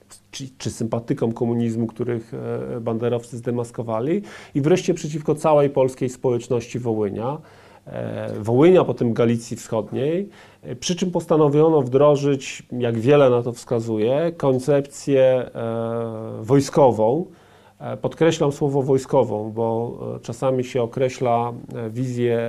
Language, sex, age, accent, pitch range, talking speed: Polish, male, 40-59, native, 115-135 Hz, 110 wpm